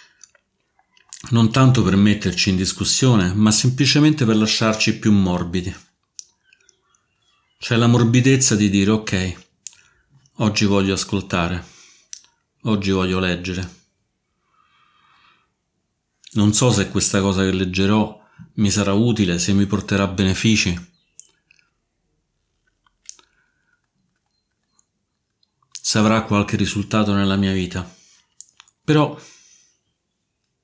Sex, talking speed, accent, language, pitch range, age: male, 90 wpm, native, Italian, 95-110 Hz, 40-59